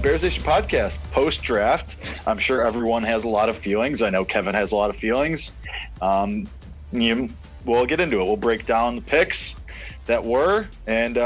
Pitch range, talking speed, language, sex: 110-130 Hz, 180 wpm, English, male